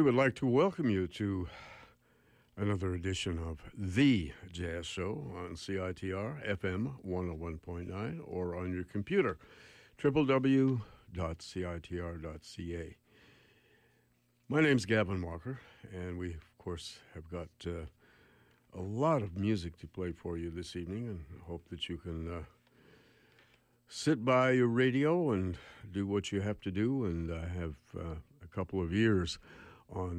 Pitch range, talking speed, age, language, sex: 90-120 Hz, 140 wpm, 60-79, English, male